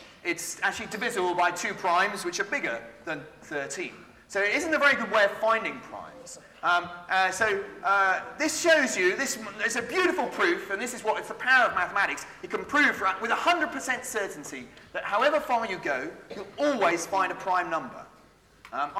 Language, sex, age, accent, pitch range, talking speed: English, male, 30-49, British, 185-290 Hz, 190 wpm